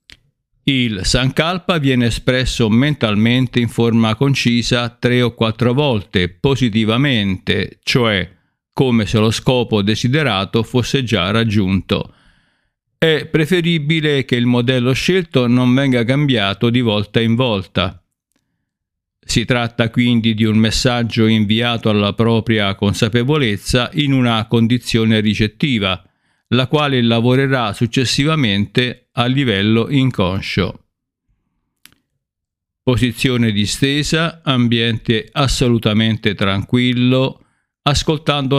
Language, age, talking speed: Italian, 50-69, 95 wpm